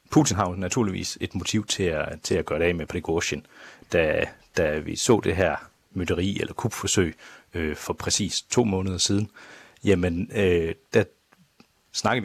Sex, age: male, 40-59